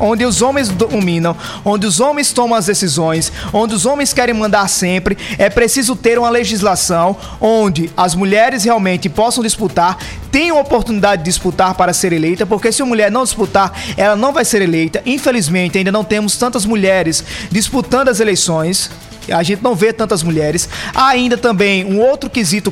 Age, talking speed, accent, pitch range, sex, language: 20-39, 175 wpm, Brazilian, 190-235 Hz, male, Portuguese